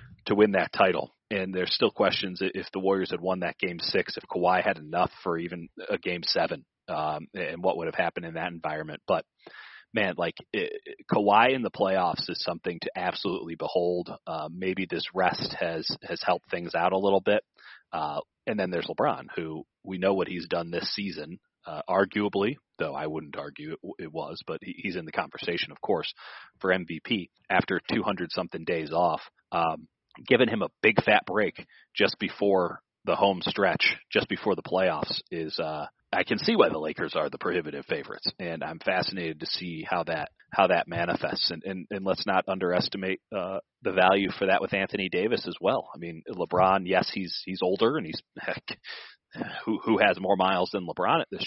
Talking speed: 195 wpm